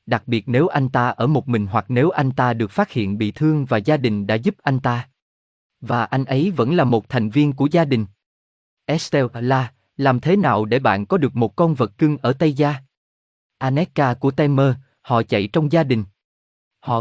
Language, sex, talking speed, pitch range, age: Vietnamese, male, 210 wpm, 115-150 Hz, 20-39